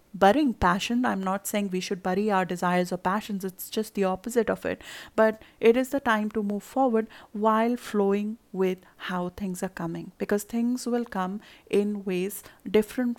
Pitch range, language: 190-225 Hz, English